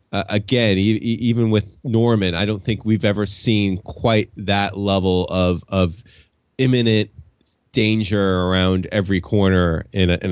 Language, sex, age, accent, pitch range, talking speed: English, male, 20-39, American, 90-115 Hz, 130 wpm